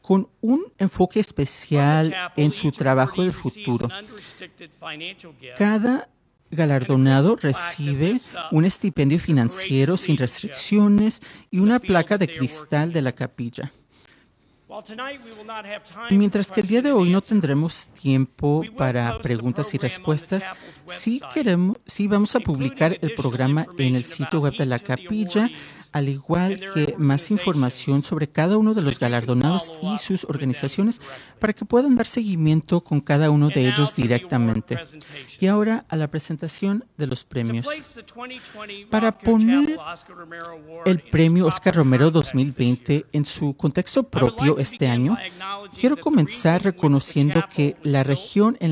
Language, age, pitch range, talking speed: English, 40-59, 140-205 Hz, 130 wpm